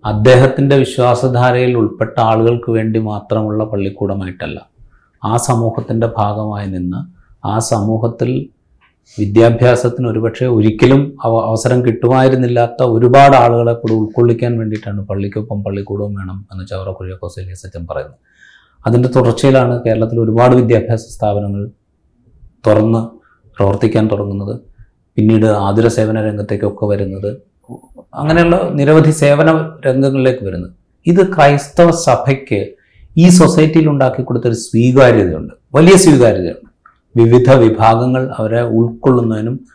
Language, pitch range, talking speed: Malayalam, 110-135 Hz, 95 wpm